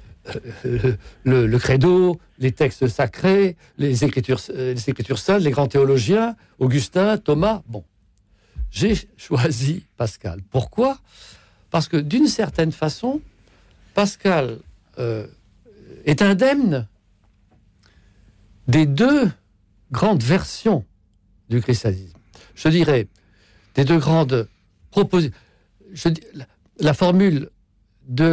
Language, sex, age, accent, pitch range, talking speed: French, male, 60-79, French, 105-170 Hz, 95 wpm